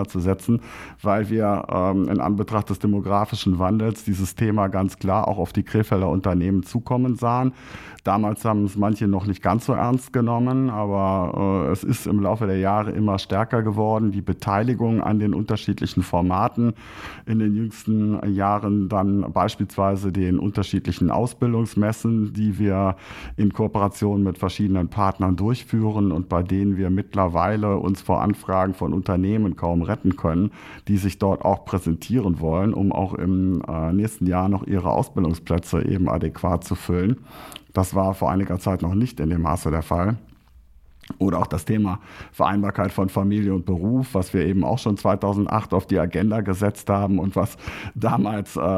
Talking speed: 160 wpm